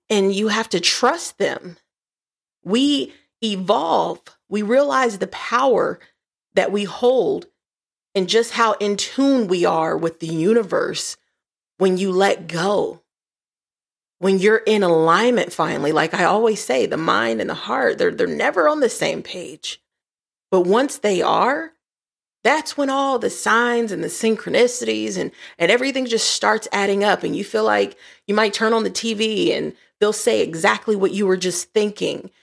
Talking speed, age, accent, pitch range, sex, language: 165 wpm, 30-49, American, 200-260 Hz, female, English